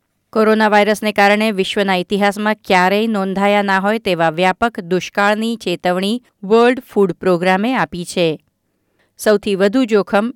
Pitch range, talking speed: 180-215 Hz, 120 wpm